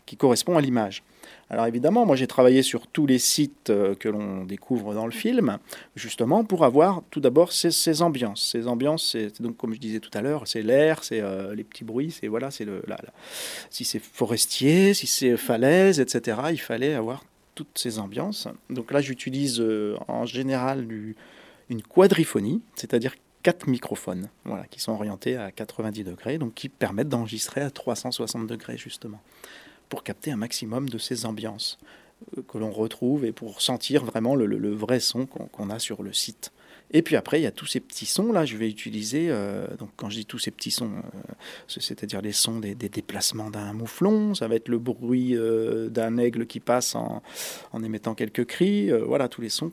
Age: 40-59